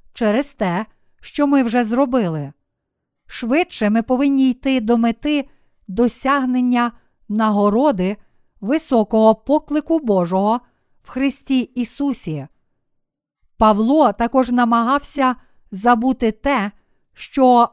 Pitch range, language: 210-255 Hz, Ukrainian